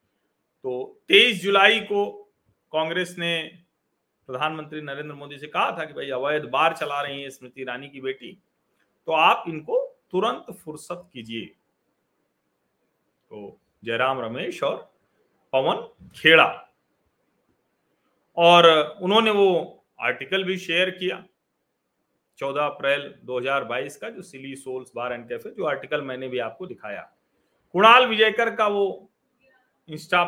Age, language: 40-59, Hindi